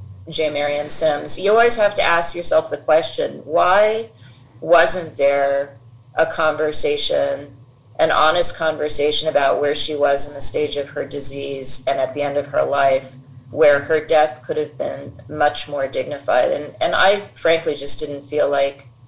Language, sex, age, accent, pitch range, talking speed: English, female, 40-59, American, 135-155 Hz, 165 wpm